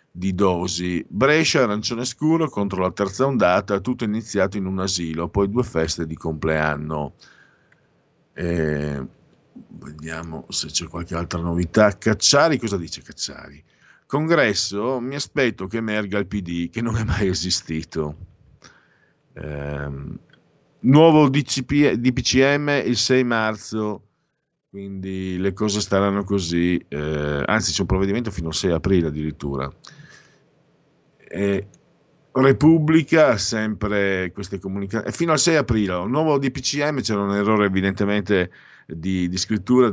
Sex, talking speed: male, 120 wpm